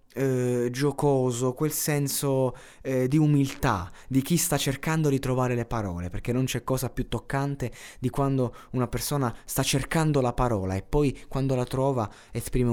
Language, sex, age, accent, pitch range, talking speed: Italian, male, 20-39, native, 95-125 Hz, 165 wpm